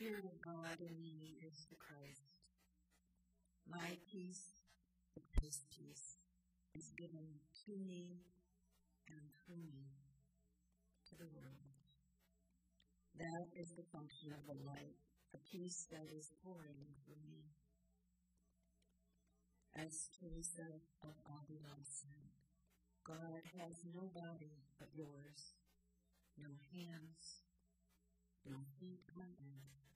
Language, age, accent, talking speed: English, 50-69, American, 110 wpm